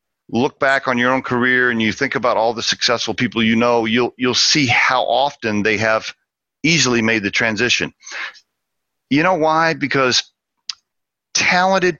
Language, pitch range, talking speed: English, 100-135 Hz, 160 wpm